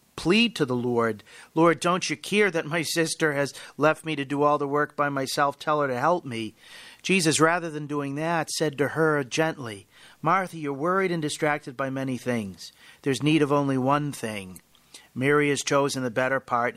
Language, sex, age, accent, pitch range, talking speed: English, male, 50-69, American, 125-160 Hz, 195 wpm